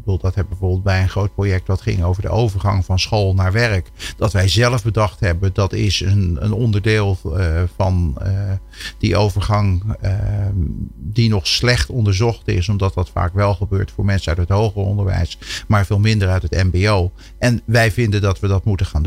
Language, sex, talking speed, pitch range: Dutch, male, 200 wpm, 95-110 Hz